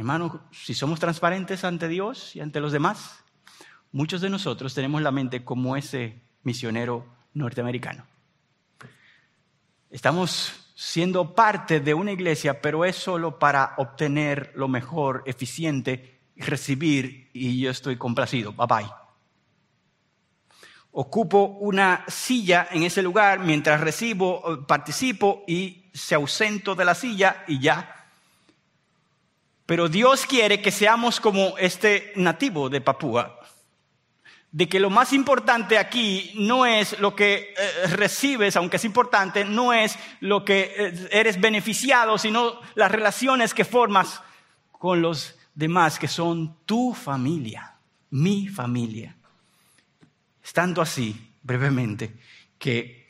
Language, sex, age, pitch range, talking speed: Spanish, male, 50-69, 135-200 Hz, 120 wpm